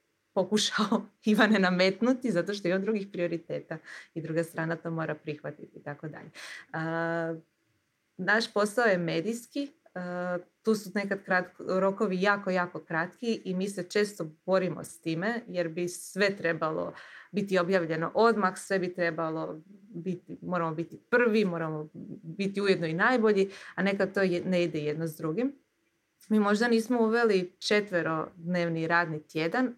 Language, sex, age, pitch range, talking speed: Croatian, female, 20-39, 160-195 Hz, 150 wpm